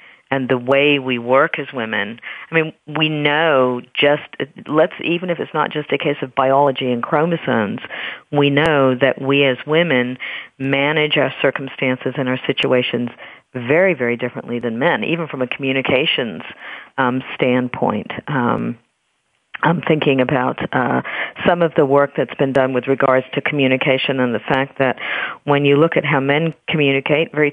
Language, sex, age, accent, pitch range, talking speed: English, female, 40-59, American, 130-150 Hz, 165 wpm